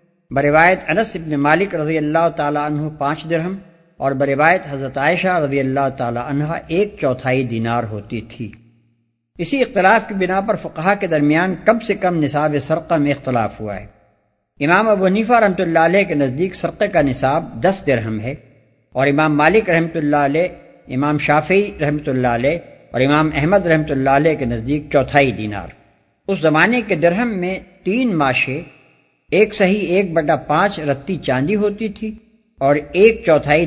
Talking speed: 165 wpm